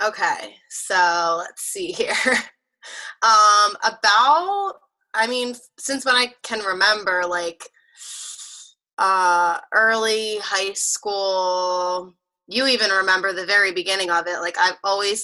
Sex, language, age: female, English, 20-39